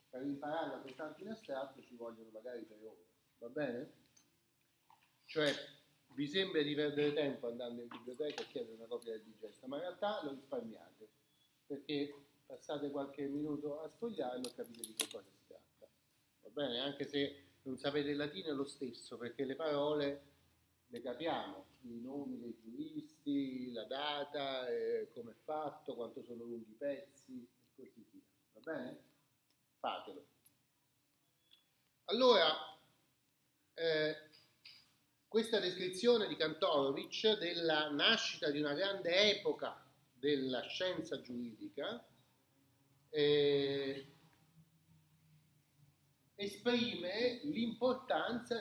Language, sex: Italian, male